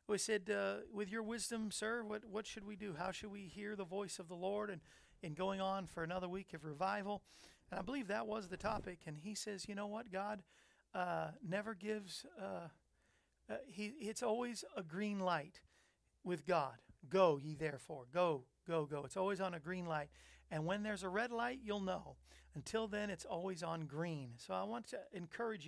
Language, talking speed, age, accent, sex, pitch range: English, 205 wpm, 40-59, American, male, 180-220 Hz